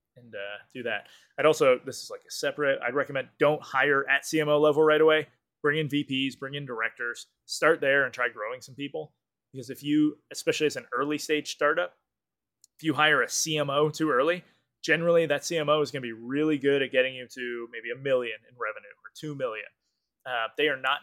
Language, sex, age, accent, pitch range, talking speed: English, male, 20-39, American, 125-160 Hz, 210 wpm